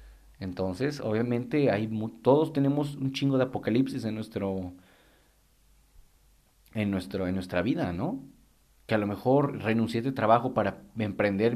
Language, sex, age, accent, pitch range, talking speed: Spanish, male, 40-59, Mexican, 95-130 Hz, 140 wpm